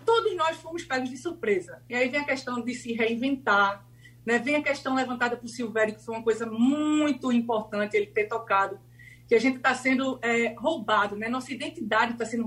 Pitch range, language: 230-300 Hz, Portuguese